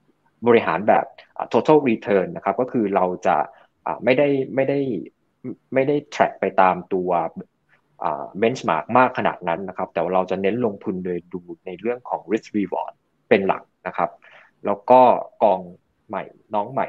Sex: male